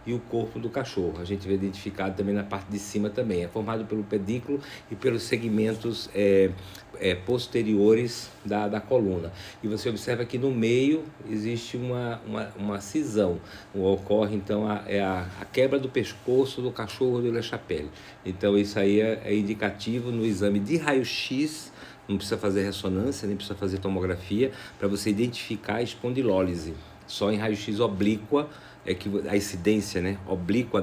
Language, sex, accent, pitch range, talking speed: Portuguese, male, Brazilian, 100-125 Hz, 165 wpm